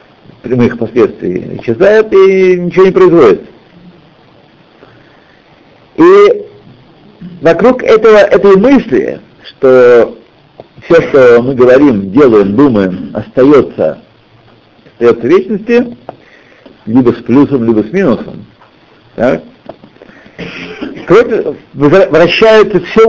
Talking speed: 80 wpm